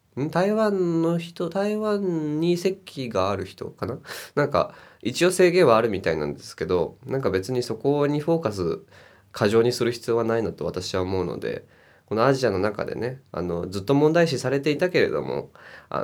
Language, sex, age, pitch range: Japanese, male, 20-39, 95-135 Hz